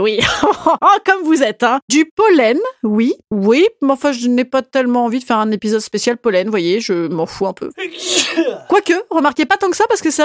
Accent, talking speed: French, 245 wpm